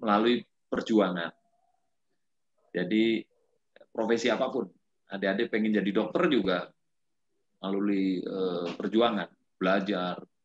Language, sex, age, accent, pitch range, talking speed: Indonesian, male, 30-49, native, 105-145 Hz, 75 wpm